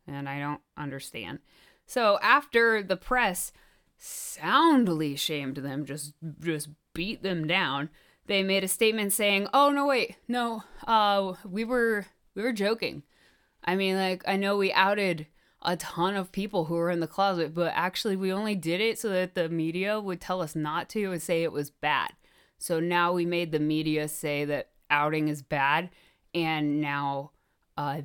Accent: American